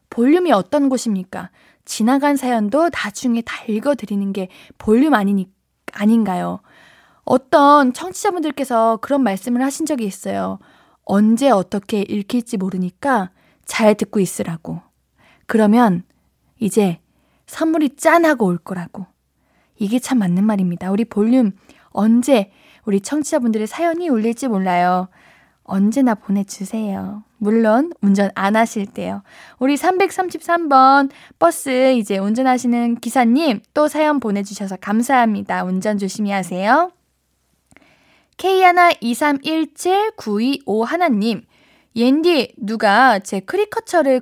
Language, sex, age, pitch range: Korean, female, 20-39, 205-290 Hz